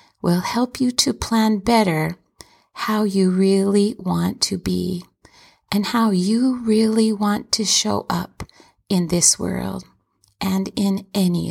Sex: female